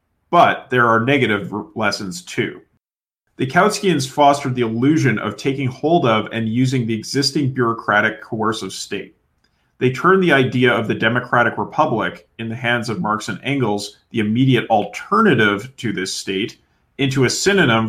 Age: 40-59